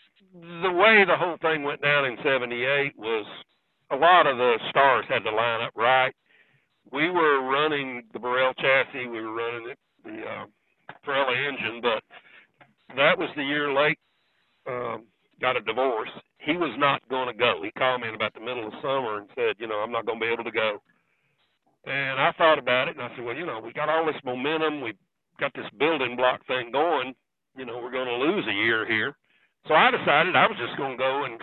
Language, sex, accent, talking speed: English, male, American, 210 wpm